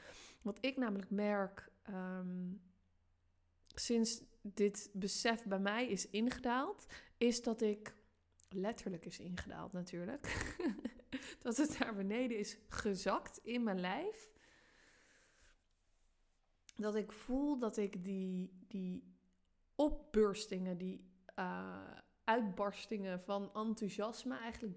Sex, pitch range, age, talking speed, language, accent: female, 185-230 Hz, 20-39, 100 wpm, Dutch, Dutch